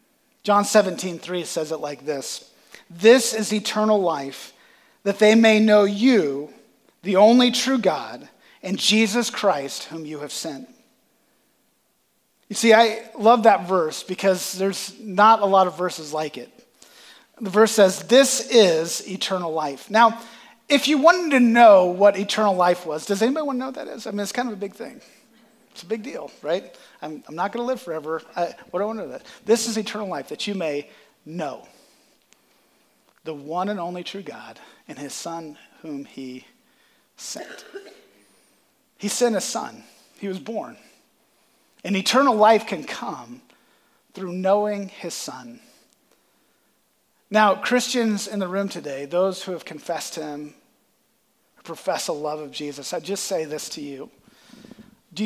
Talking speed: 165 wpm